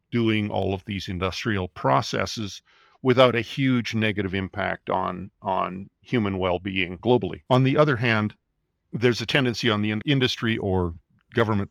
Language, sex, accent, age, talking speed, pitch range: English, male, American, 50-69, 145 wpm, 105-130 Hz